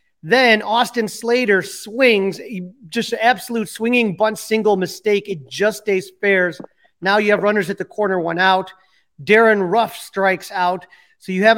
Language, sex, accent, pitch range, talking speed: English, male, American, 185-230 Hz, 160 wpm